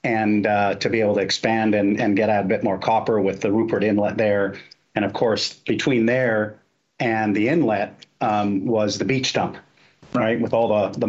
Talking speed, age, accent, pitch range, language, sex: 205 wpm, 40-59, American, 100-115 Hz, English, male